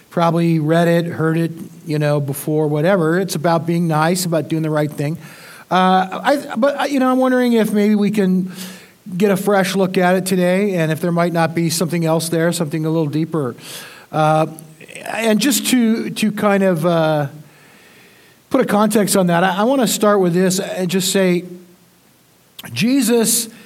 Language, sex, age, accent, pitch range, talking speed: English, male, 50-69, American, 165-200 Hz, 185 wpm